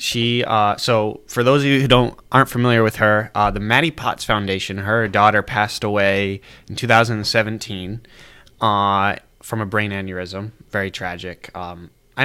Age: 20-39